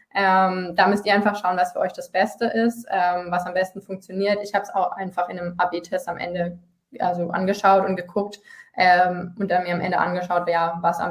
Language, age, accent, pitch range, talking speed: German, 20-39, German, 180-205 Hz, 215 wpm